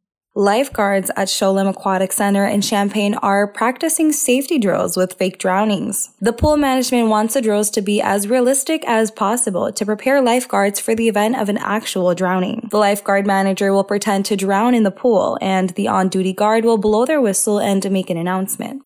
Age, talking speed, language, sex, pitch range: 10-29, 185 wpm, English, female, 190-225 Hz